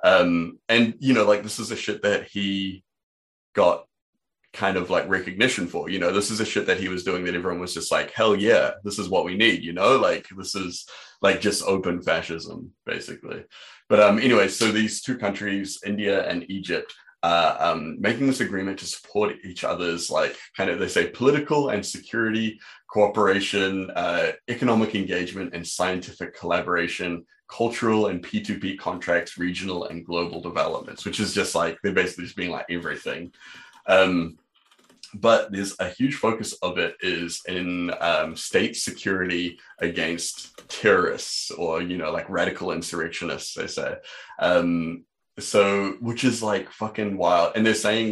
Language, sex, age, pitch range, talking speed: English, male, 20-39, 90-110 Hz, 165 wpm